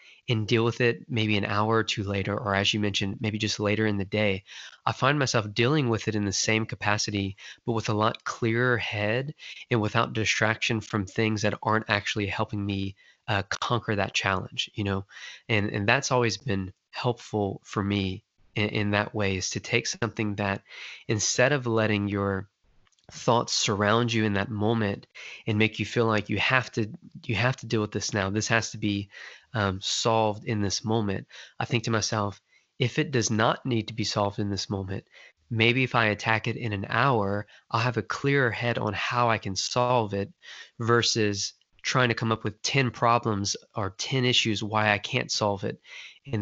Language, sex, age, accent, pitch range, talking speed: English, male, 20-39, American, 100-120 Hz, 200 wpm